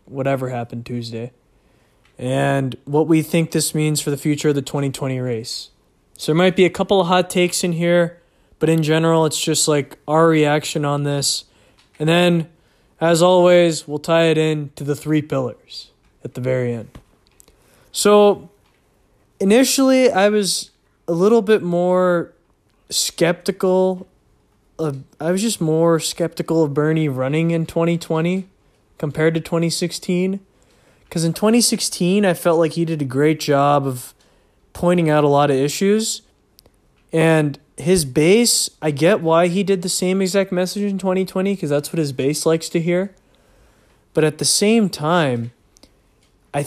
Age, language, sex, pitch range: 20-39, English, male, 145-180 Hz